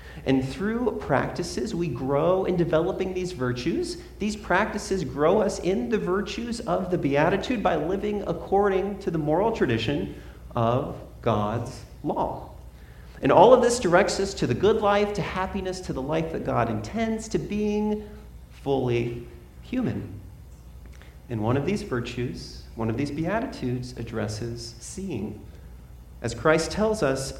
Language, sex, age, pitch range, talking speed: English, male, 40-59, 115-190 Hz, 145 wpm